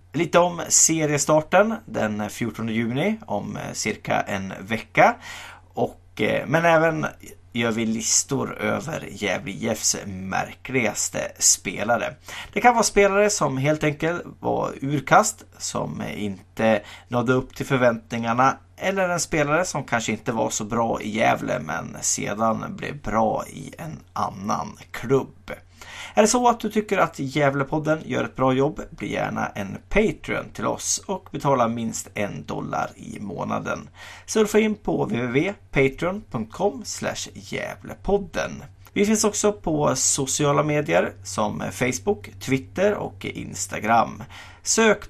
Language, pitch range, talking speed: Swedish, 105-170 Hz, 130 wpm